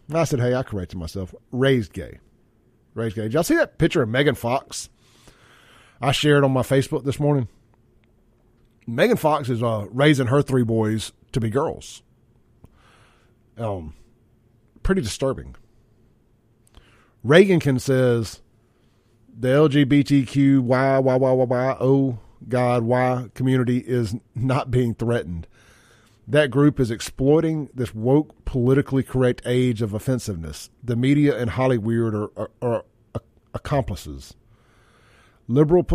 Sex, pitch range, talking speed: male, 115-135 Hz, 130 wpm